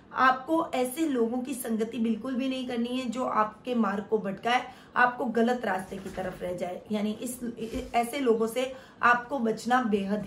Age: 20-39